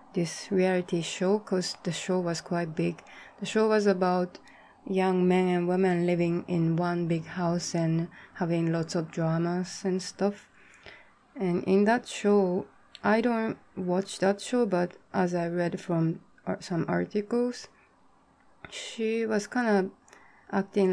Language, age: Japanese, 20-39